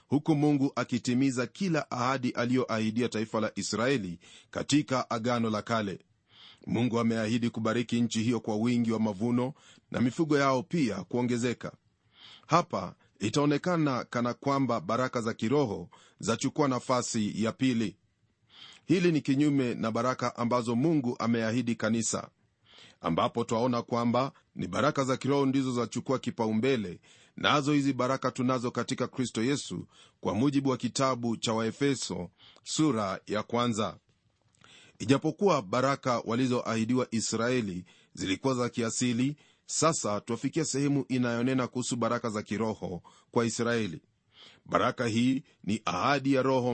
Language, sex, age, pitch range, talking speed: Swahili, male, 40-59, 115-135 Hz, 125 wpm